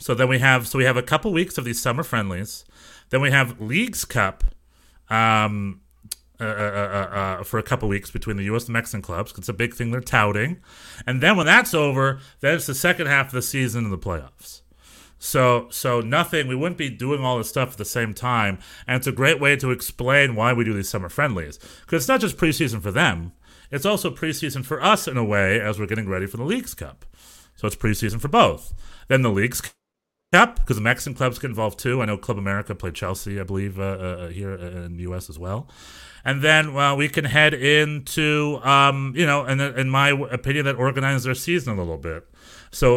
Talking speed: 230 wpm